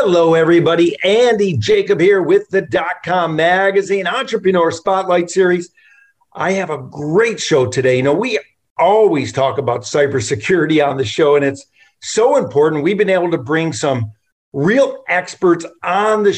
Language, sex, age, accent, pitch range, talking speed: English, male, 50-69, American, 160-200 Hz, 155 wpm